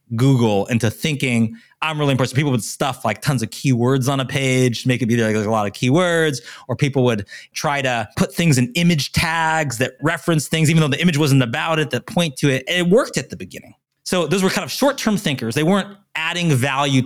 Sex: male